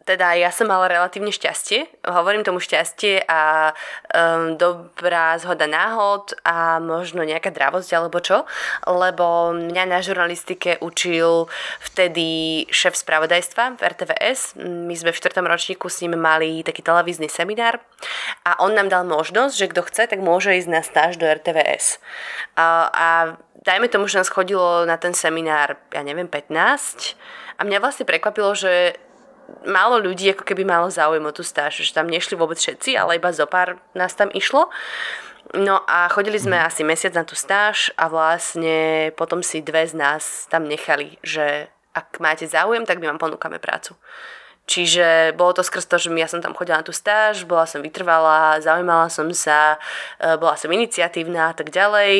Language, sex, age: Slovak, female, 20-39